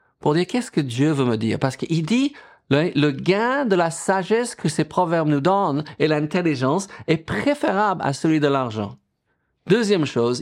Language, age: French, 50-69